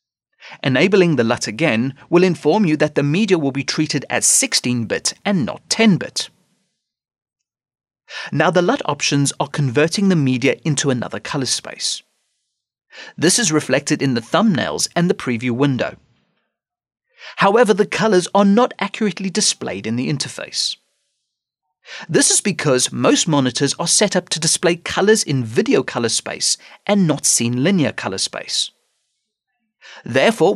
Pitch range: 130-205 Hz